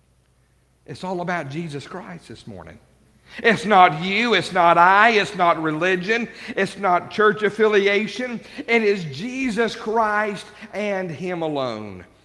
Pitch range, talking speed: 145-195 Hz, 130 wpm